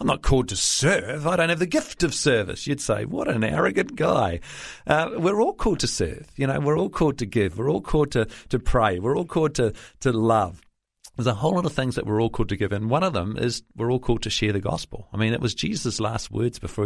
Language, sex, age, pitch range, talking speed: English, male, 40-59, 105-140 Hz, 265 wpm